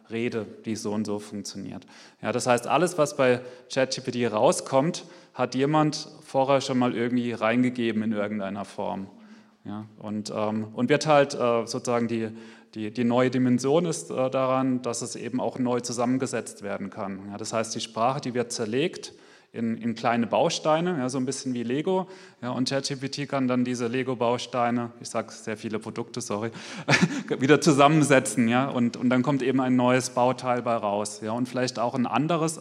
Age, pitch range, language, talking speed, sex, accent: 30-49, 115-135 Hz, German, 175 wpm, male, German